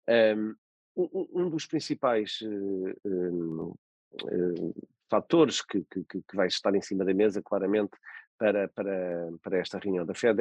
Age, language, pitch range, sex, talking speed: 40-59, Portuguese, 100-120 Hz, male, 115 wpm